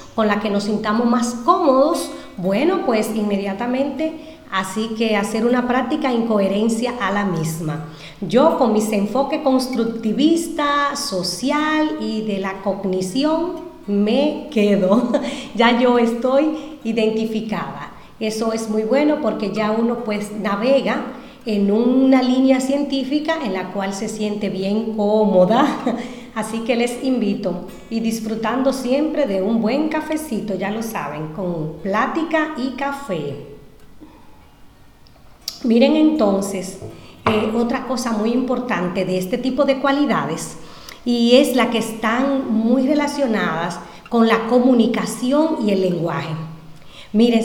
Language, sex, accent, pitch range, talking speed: Spanish, female, American, 200-260 Hz, 125 wpm